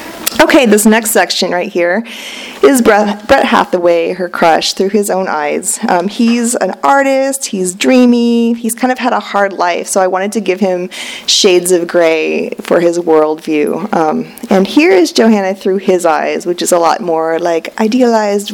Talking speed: 180 wpm